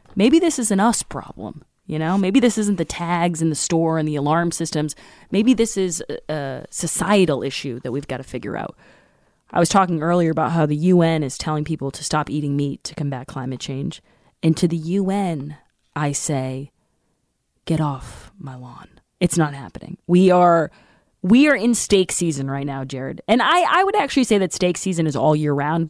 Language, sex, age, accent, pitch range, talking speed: English, female, 20-39, American, 155-205 Hz, 200 wpm